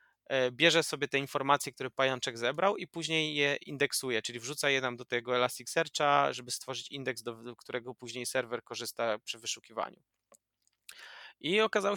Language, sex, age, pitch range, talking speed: Polish, male, 20-39, 125-150 Hz, 150 wpm